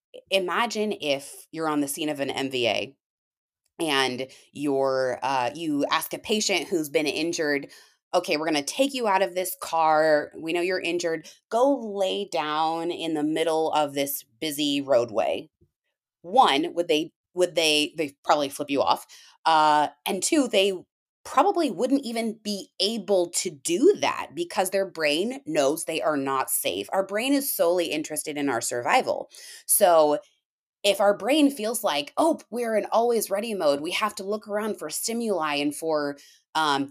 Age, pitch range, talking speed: 20-39, 150-225 Hz, 165 wpm